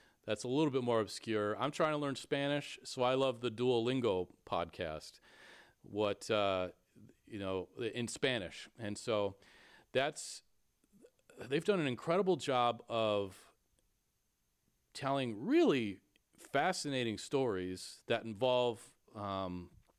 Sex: male